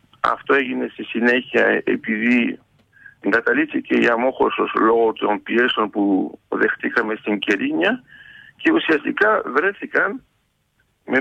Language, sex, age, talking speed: Greek, male, 50-69, 100 wpm